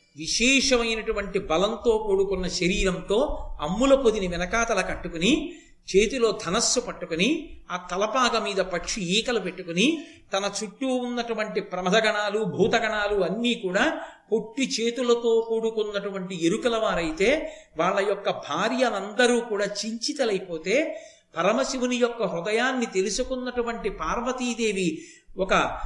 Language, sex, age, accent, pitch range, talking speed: Telugu, male, 50-69, native, 195-250 Hz, 95 wpm